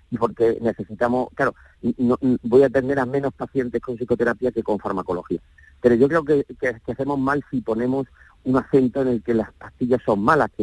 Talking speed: 200 wpm